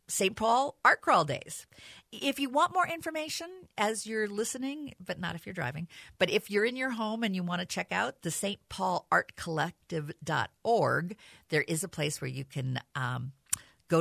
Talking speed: 185 wpm